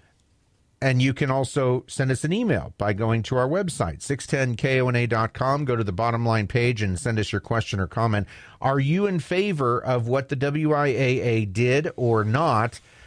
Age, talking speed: 40-59, 175 wpm